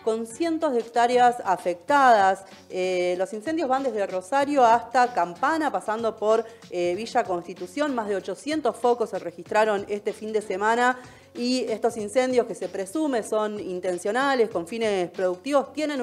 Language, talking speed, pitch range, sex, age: Spanish, 150 wpm, 185-250 Hz, female, 20-39